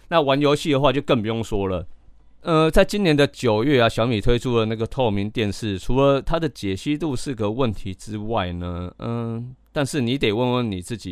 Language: Chinese